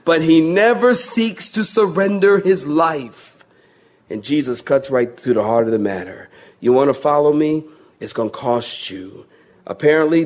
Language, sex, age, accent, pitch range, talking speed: English, male, 40-59, American, 125-180 Hz, 170 wpm